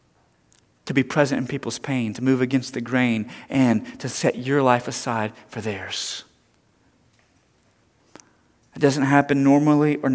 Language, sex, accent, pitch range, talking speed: English, male, American, 115-140 Hz, 140 wpm